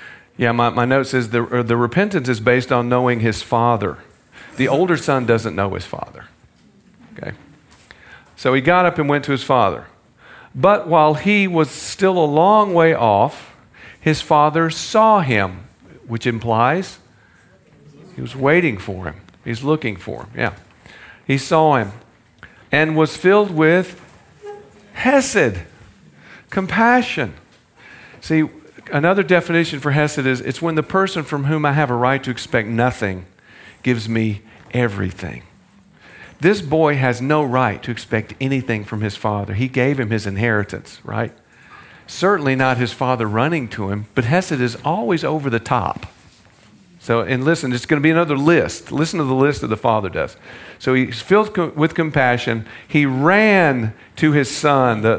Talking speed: 160 wpm